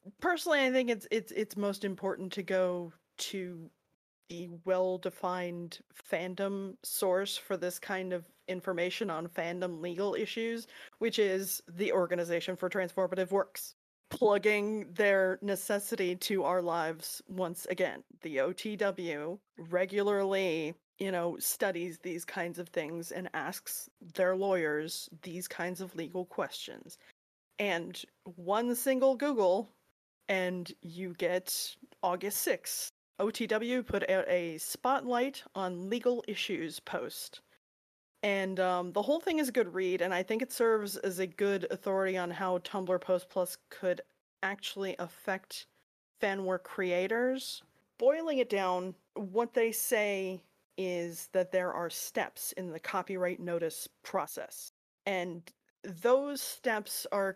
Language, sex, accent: English, female, American